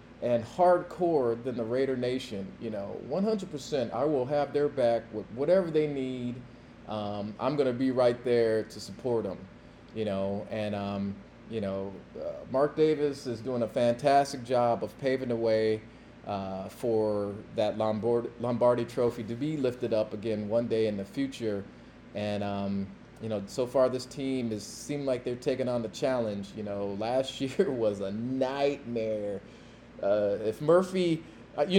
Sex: male